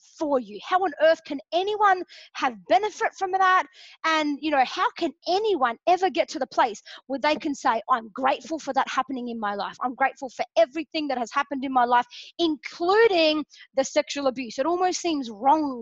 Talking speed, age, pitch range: 195 wpm, 20-39, 240-315 Hz